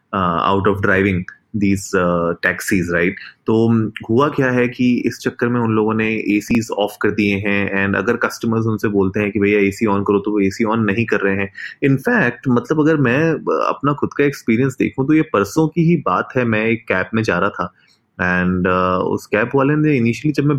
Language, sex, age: Hindi, male, 30-49